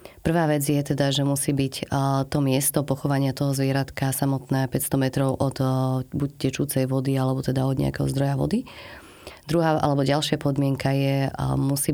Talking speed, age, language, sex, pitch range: 155 wpm, 30-49, Slovak, female, 135-150 Hz